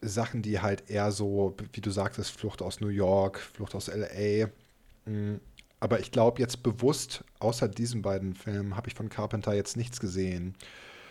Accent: German